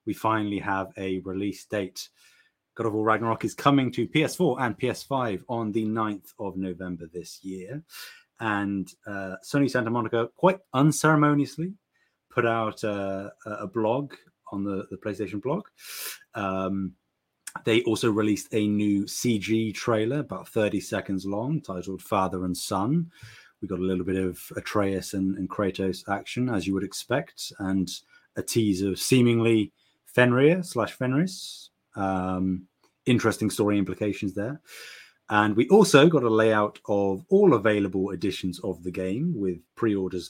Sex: male